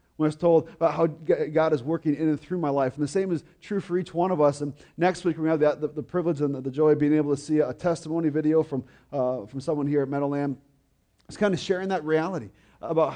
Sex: male